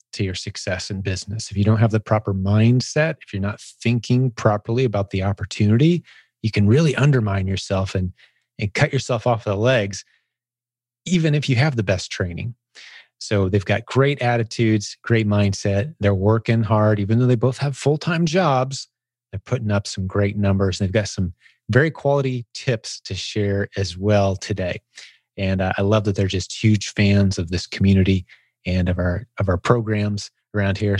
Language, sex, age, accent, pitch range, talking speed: English, male, 30-49, American, 100-120 Hz, 180 wpm